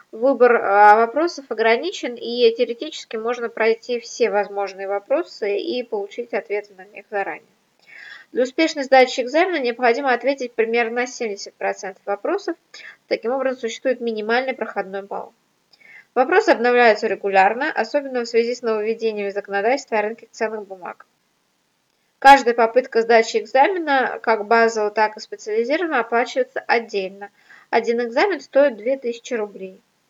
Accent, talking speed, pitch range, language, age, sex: native, 120 wpm, 220-265 Hz, Russian, 20-39, female